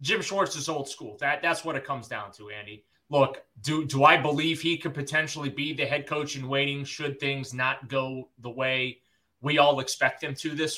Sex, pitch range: male, 130-160 Hz